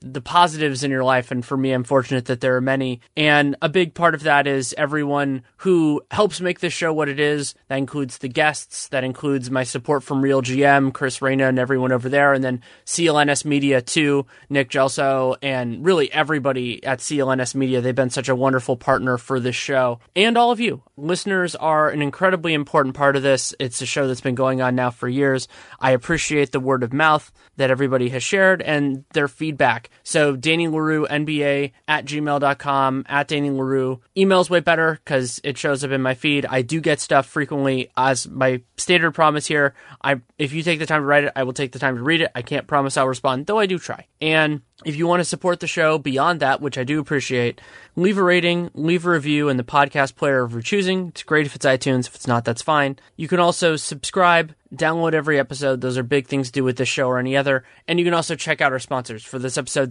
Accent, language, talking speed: American, English, 225 wpm